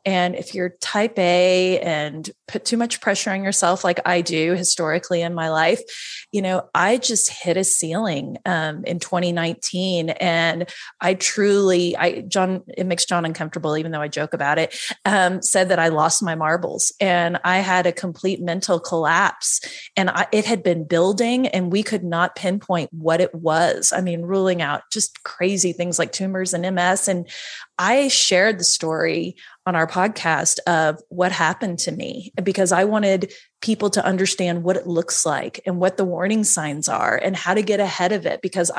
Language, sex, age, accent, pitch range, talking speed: English, female, 30-49, American, 170-195 Hz, 185 wpm